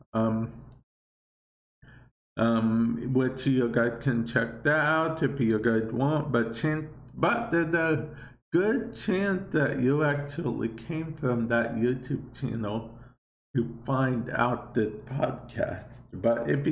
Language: English